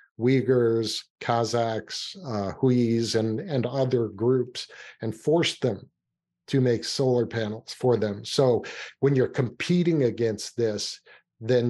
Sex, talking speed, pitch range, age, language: male, 125 wpm, 115-130 Hz, 50-69, English